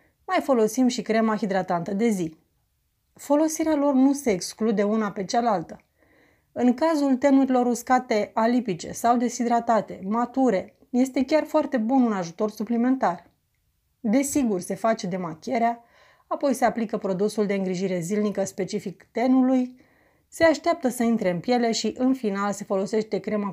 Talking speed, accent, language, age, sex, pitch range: 140 wpm, native, Romanian, 30-49, female, 200-250 Hz